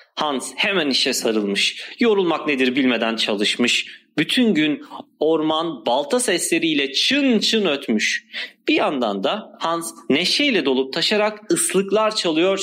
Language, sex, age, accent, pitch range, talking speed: Turkish, male, 40-59, native, 135-220 Hz, 120 wpm